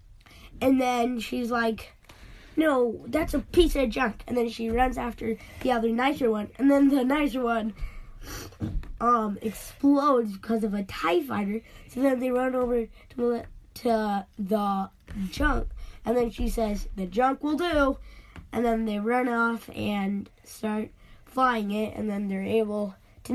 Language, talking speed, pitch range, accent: English, 155 wpm, 205-250 Hz, American